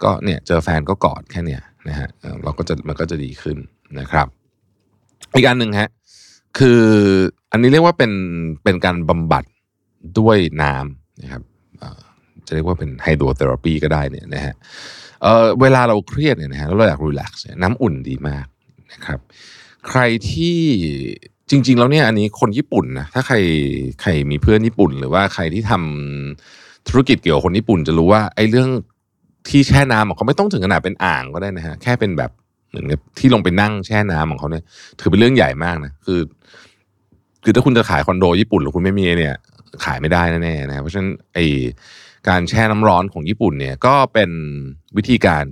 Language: Thai